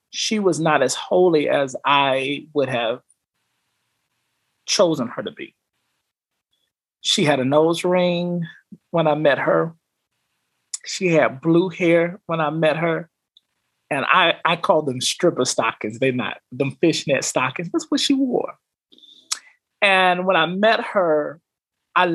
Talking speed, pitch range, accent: 140 wpm, 150-205 Hz, American